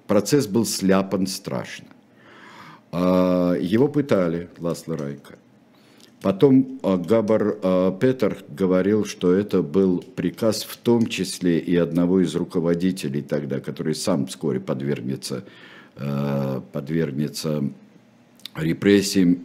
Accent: native